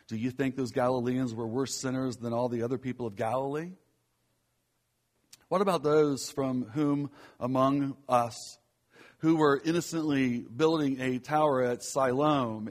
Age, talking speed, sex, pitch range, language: 60-79, 140 wpm, male, 120-145 Hz, English